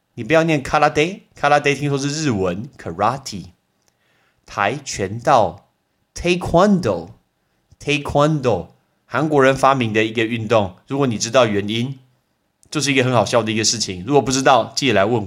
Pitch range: 105-150 Hz